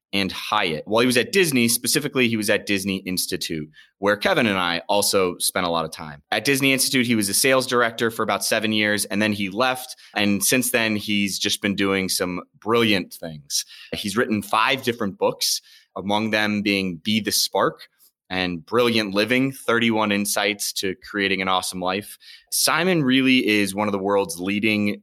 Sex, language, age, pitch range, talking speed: male, English, 30-49, 90-120 Hz, 185 wpm